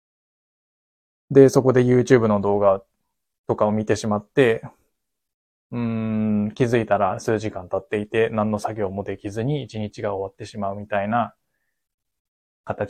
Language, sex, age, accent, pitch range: Japanese, male, 20-39, native, 105-120 Hz